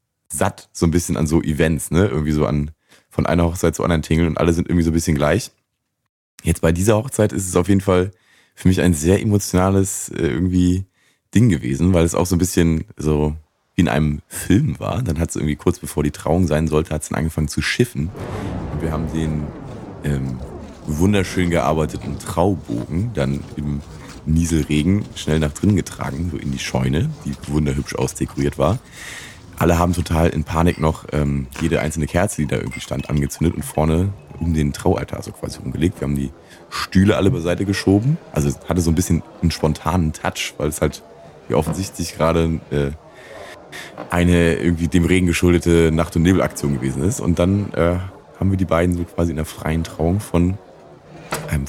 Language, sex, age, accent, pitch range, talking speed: German, male, 30-49, German, 75-95 Hz, 190 wpm